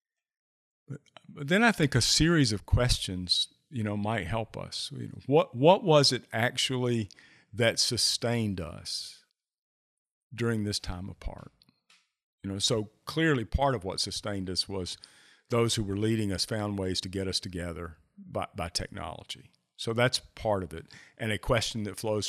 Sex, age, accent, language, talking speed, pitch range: male, 50-69, American, English, 160 wpm, 95-130 Hz